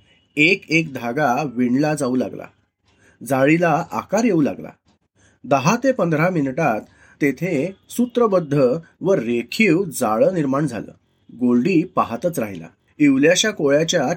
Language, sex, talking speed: Marathi, male, 110 wpm